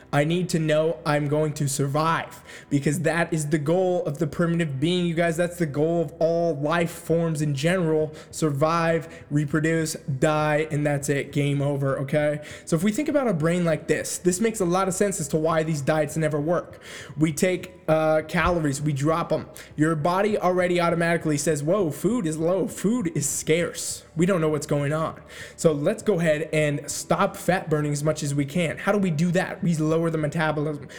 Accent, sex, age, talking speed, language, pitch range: American, male, 20-39, 205 wpm, English, 155-180 Hz